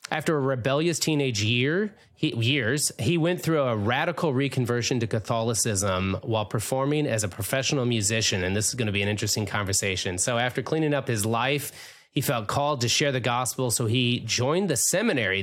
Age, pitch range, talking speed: 30-49, 110-140 Hz, 185 wpm